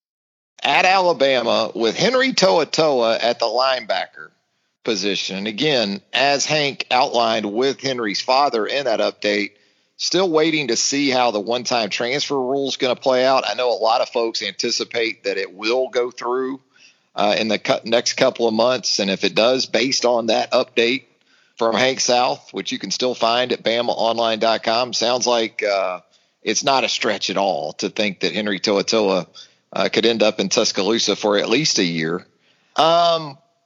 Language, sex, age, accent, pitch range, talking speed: English, male, 40-59, American, 110-140 Hz, 175 wpm